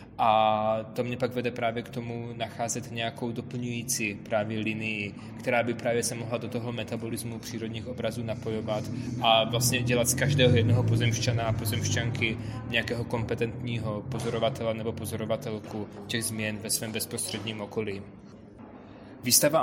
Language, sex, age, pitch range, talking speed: Czech, male, 20-39, 110-125 Hz, 140 wpm